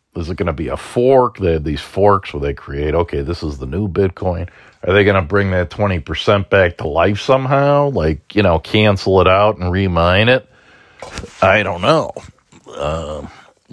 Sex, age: male, 50-69